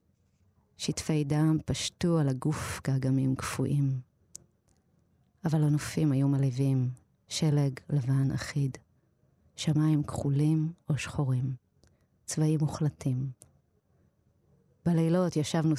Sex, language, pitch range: female, Hebrew, 130-150 Hz